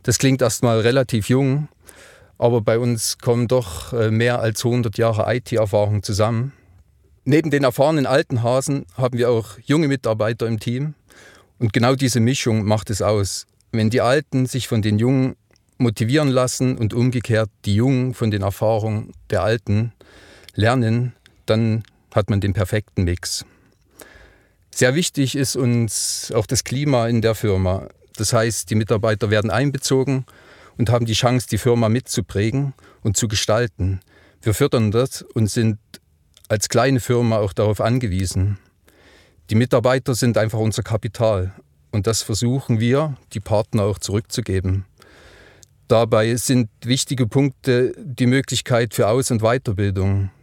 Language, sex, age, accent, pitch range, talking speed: German, male, 40-59, German, 105-125 Hz, 145 wpm